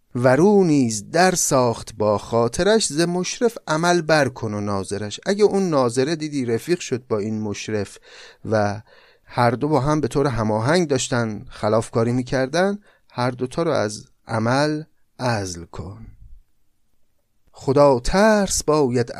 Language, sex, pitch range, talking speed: Persian, male, 110-155 Hz, 145 wpm